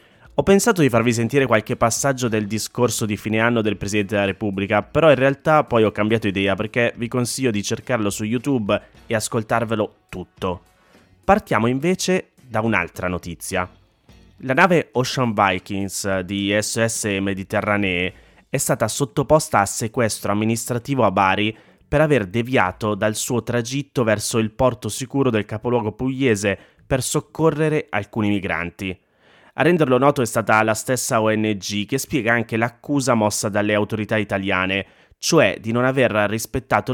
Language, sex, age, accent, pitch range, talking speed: Italian, male, 20-39, native, 105-130 Hz, 150 wpm